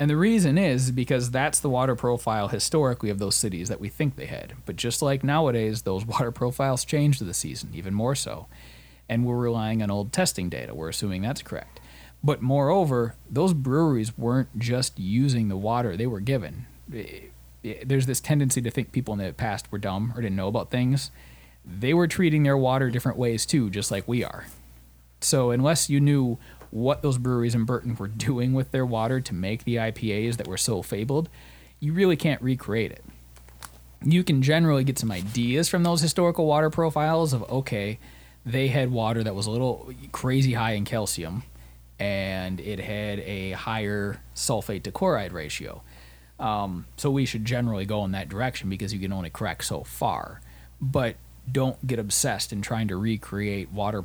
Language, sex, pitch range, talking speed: English, male, 100-130 Hz, 185 wpm